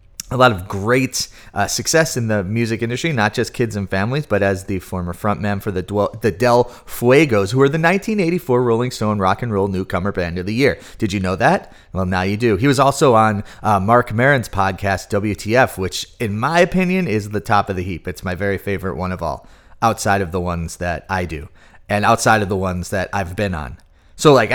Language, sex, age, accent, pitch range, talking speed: English, male, 30-49, American, 95-125 Hz, 225 wpm